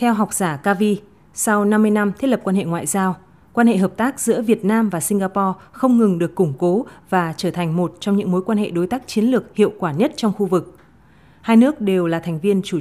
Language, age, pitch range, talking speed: Vietnamese, 20-39, 180-220 Hz, 250 wpm